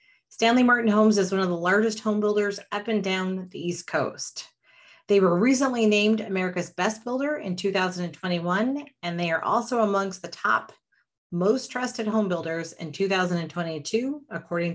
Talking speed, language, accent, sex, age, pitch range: 160 wpm, English, American, female, 30-49, 170-215 Hz